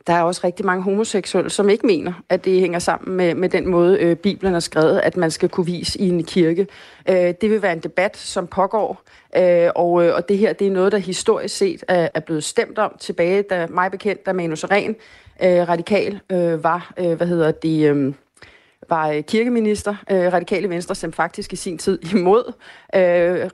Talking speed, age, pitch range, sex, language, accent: 205 wpm, 30-49, 175-205 Hz, female, Danish, native